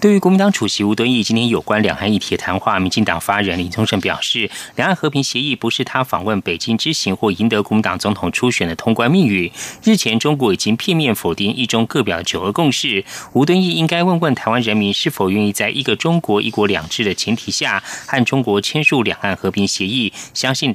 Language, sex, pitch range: Chinese, male, 100-140 Hz